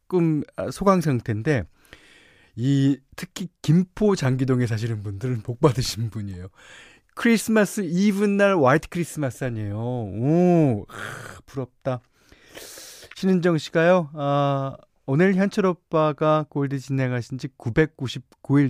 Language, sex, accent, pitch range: Korean, male, native, 110-155 Hz